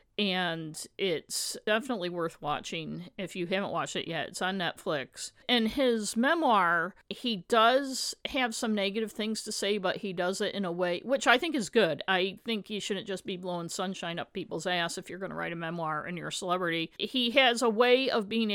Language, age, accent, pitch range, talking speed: English, 50-69, American, 170-210 Hz, 210 wpm